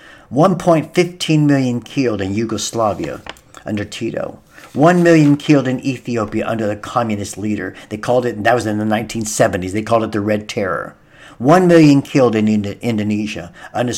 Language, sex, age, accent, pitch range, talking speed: English, male, 50-69, American, 105-140 Hz, 155 wpm